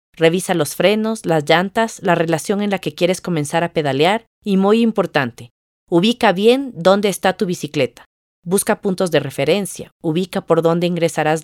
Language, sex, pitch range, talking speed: Spanish, female, 155-200 Hz, 165 wpm